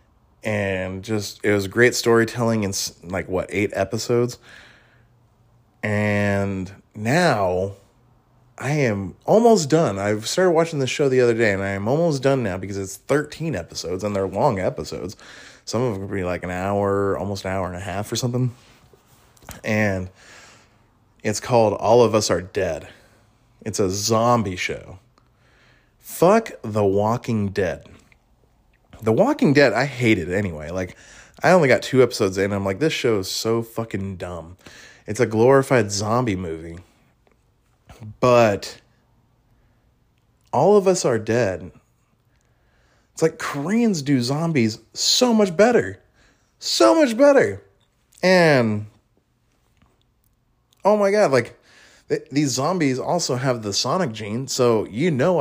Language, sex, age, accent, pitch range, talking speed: English, male, 20-39, American, 100-125 Hz, 140 wpm